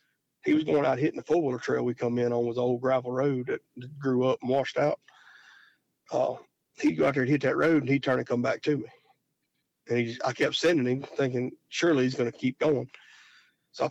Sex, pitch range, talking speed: male, 120-130 Hz, 235 wpm